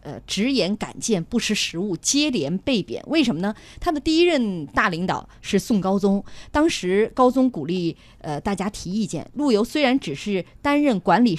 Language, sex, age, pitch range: Chinese, female, 30-49, 185-265 Hz